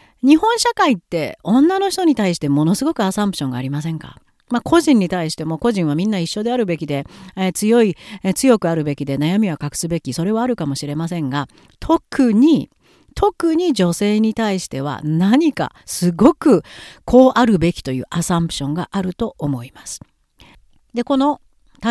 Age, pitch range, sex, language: 40-59, 160-265 Hz, female, Japanese